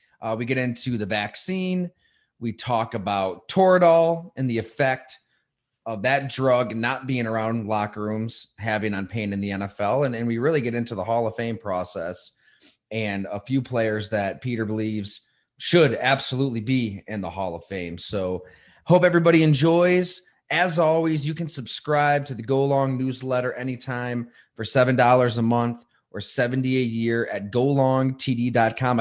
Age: 30-49